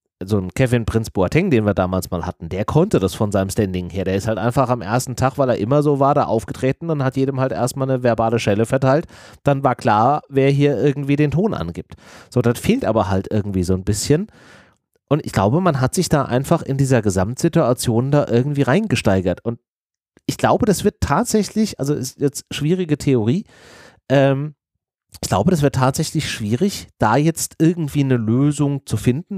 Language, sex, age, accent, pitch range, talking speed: German, male, 30-49, German, 110-150 Hz, 195 wpm